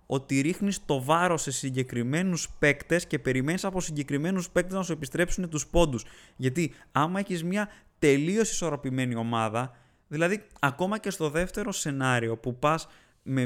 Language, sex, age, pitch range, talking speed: Greek, male, 20-39, 130-175 Hz, 145 wpm